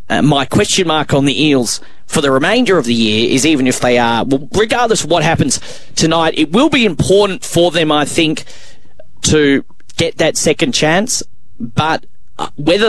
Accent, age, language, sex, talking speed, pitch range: Australian, 30-49, English, male, 175 wpm, 125-155 Hz